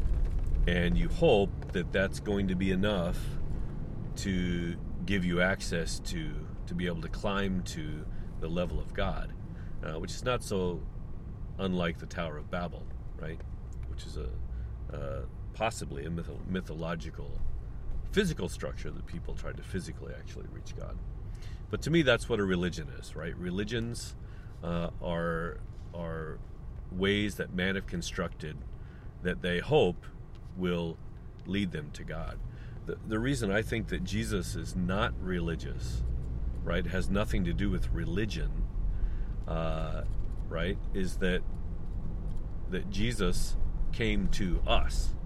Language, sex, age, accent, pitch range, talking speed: English, male, 40-59, American, 85-105 Hz, 140 wpm